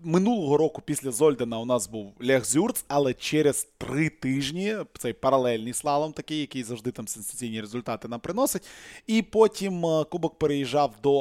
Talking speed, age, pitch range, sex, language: 155 wpm, 20-39, 125-160 Hz, male, Russian